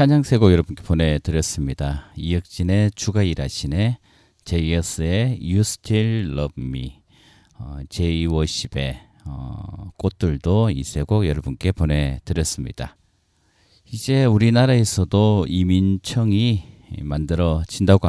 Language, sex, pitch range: Korean, male, 75-100 Hz